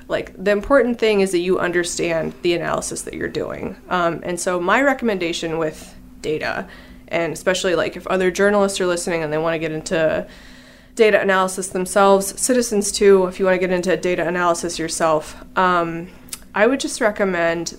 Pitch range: 175-210 Hz